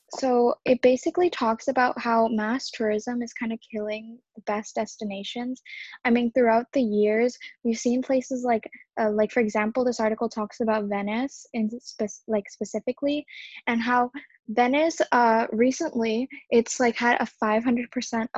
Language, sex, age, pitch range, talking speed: English, female, 10-29, 215-245 Hz, 155 wpm